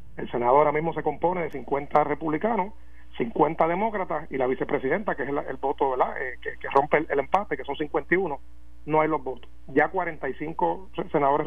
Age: 40-59